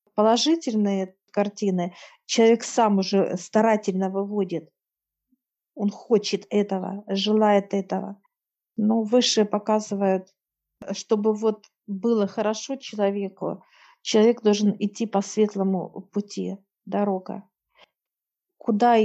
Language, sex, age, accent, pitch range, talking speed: Russian, female, 50-69, native, 195-230 Hz, 90 wpm